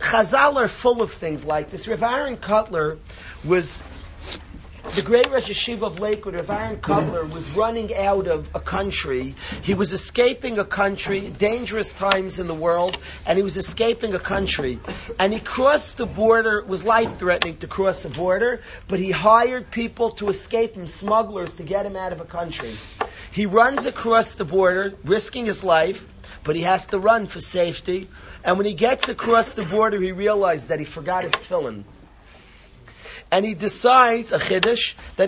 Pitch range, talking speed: 185-230 Hz, 175 wpm